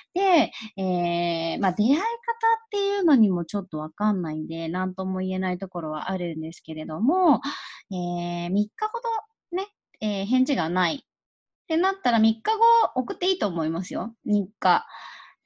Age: 20-39